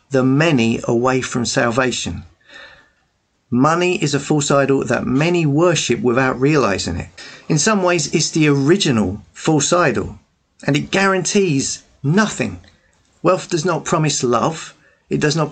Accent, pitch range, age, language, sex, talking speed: British, 130-170 Hz, 40-59, English, male, 140 wpm